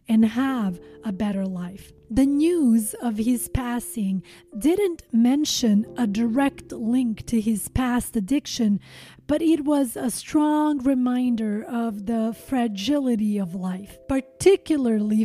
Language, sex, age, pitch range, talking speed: English, female, 30-49, 215-265 Hz, 120 wpm